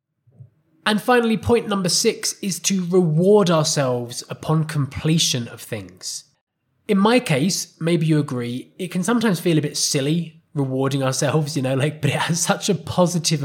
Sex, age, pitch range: male, 20-39, 130-170 Hz